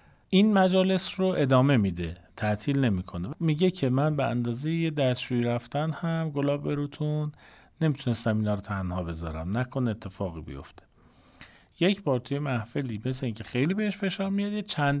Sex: male